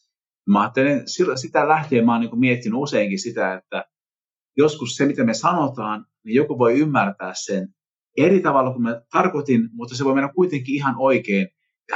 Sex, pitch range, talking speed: male, 105-155 Hz, 165 wpm